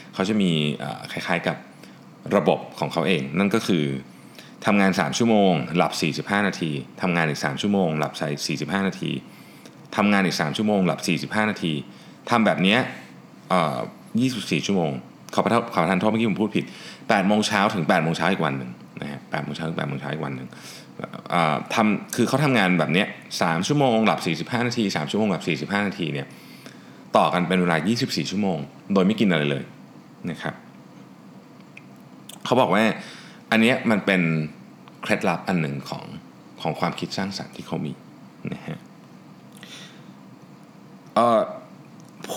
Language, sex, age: Thai, male, 20-39